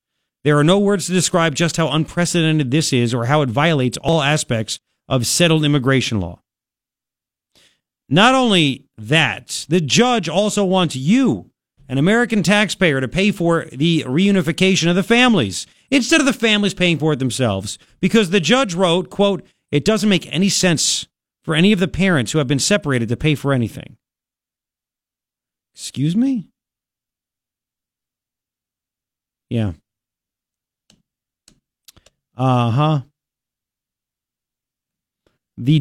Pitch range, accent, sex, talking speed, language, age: 120-185 Hz, American, male, 125 wpm, English, 50-69